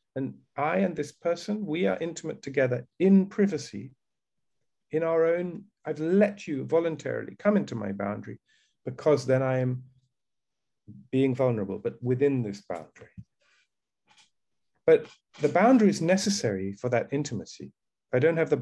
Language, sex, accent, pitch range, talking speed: English, male, British, 120-175 Hz, 145 wpm